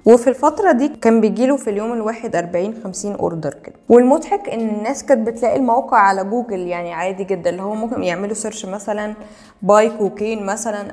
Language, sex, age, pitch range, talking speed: Arabic, female, 20-39, 190-240 Hz, 170 wpm